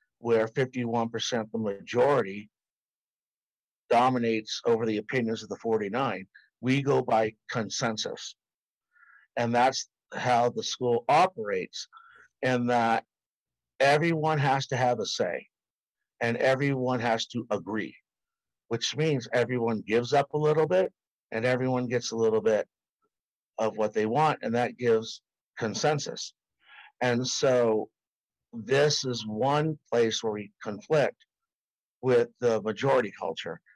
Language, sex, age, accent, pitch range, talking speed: English, male, 50-69, American, 115-150 Hz, 125 wpm